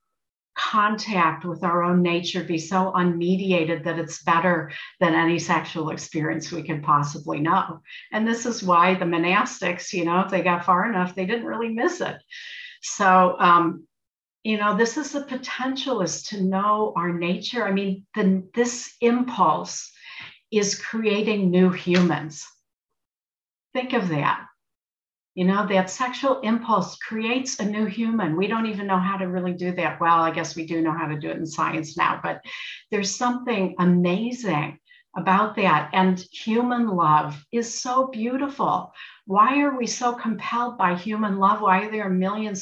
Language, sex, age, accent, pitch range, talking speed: English, female, 60-79, American, 170-225 Hz, 165 wpm